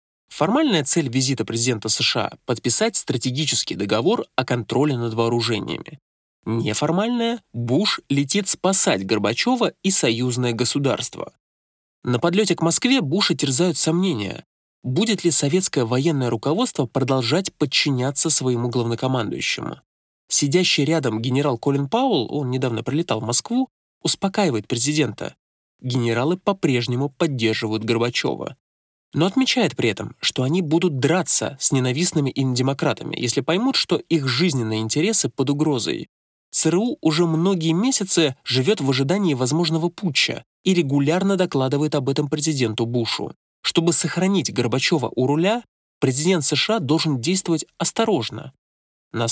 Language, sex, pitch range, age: Russian, male, 125-175 Hz, 20-39